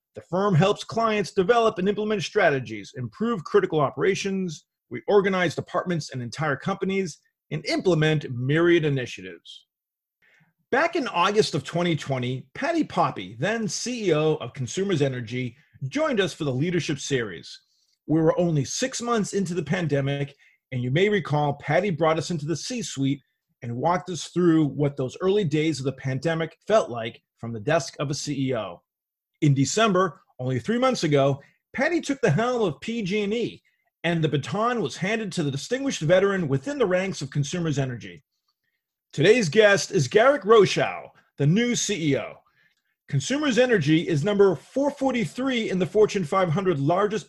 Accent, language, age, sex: American, English, 30-49, male